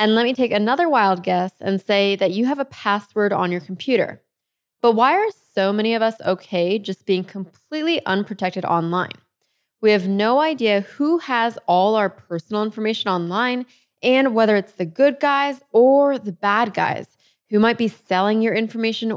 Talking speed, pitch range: 180 wpm, 190-235 Hz